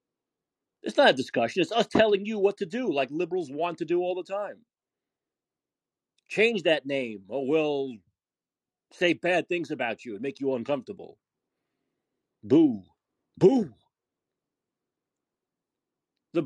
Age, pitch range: 40-59, 125-210 Hz